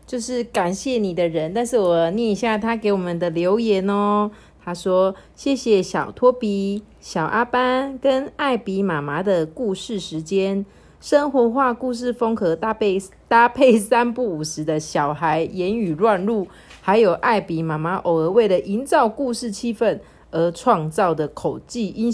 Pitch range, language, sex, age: 195-265 Hz, Chinese, female, 30-49